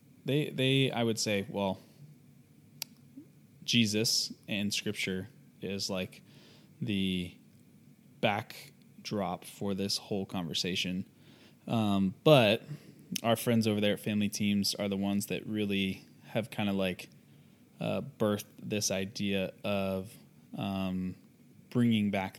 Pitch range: 100-120 Hz